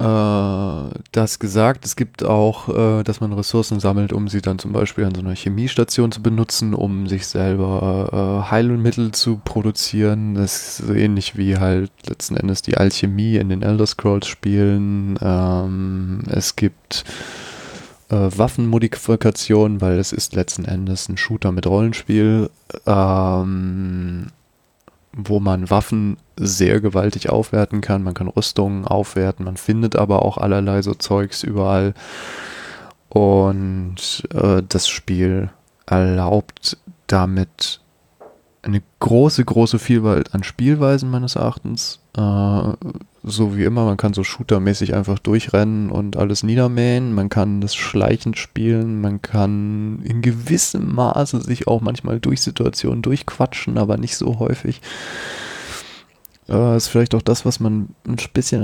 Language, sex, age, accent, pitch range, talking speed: German, male, 20-39, German, 100-115 Hz, 130 wpm